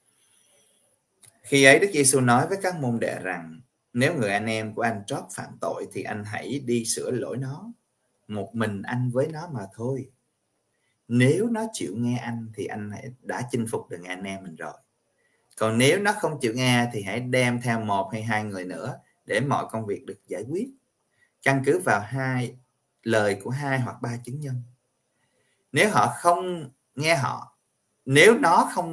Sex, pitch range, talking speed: male, 105-130 Hz, 190 wpm